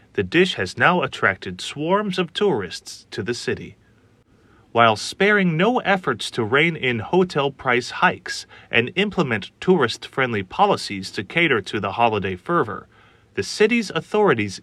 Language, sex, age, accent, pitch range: Chinese, male, 30-49, American, 110-180 Hz